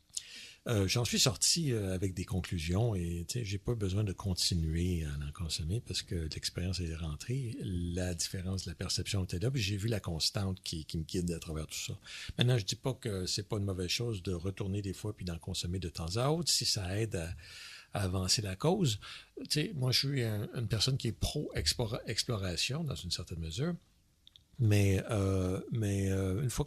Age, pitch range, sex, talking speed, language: 60-79, 90-120 Hz, male, 205 wpm, French